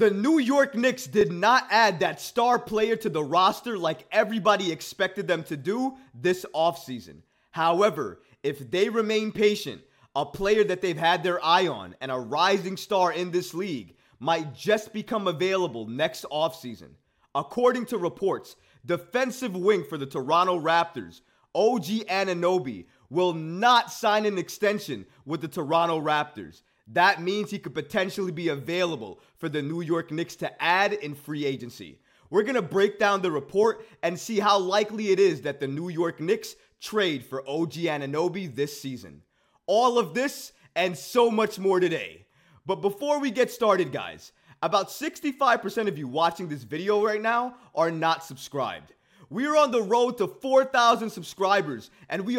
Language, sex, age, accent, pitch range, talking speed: English, male, 20-39, American, 160-215 Hz, 165 wpm